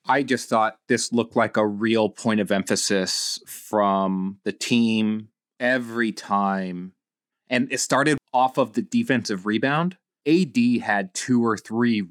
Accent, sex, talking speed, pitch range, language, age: American, male, 145 wpm, 105-130 Hz, English, 30-49